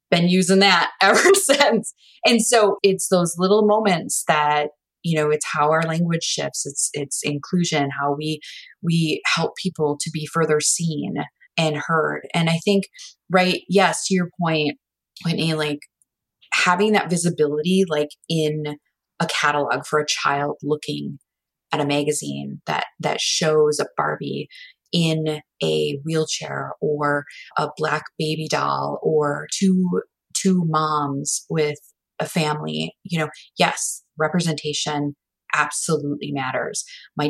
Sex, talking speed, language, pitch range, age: female, 135 wpm, English, 150-185 Hz, 20-39